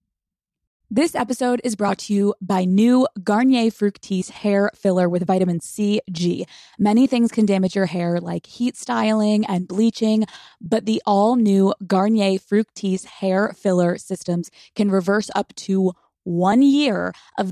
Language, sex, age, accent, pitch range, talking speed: English, female, 20-39, American, 190-225 Hz, 140 wpm